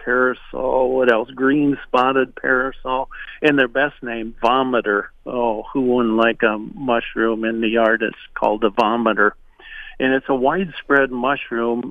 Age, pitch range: 50-69, 115-135 Hz